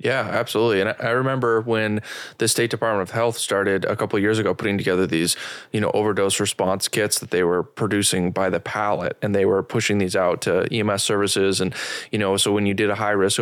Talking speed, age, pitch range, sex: 230 wpm, 20-39, 95-110 Hz, male